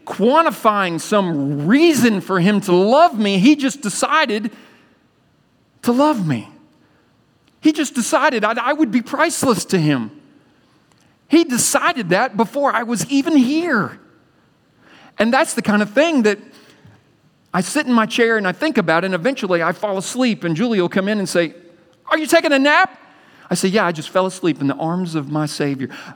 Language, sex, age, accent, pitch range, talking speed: English, male, 40-59, American, 175-250 Hz, 175 wpm